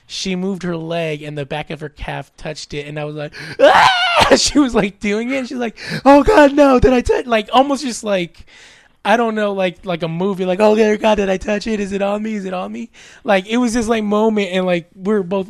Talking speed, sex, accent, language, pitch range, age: 265 wpm, male, American, English, 170-230 Hz, 20-39